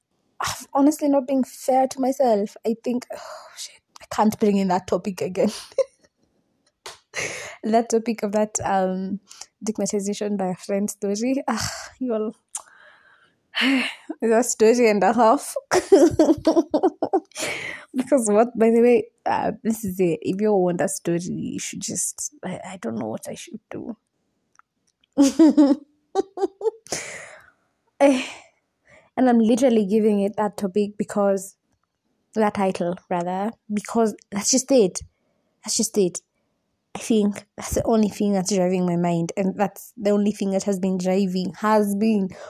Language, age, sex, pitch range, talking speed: English, 20-39, female, 200-280 Hz, 140 wpm